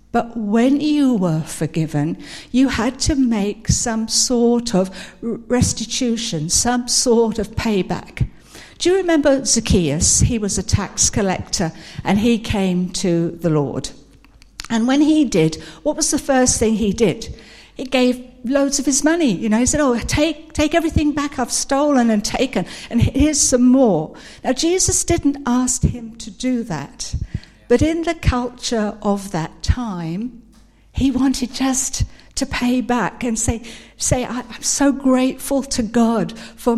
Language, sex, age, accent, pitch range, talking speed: English, female, 60-79, British, 200-265 Hz, 155 wpm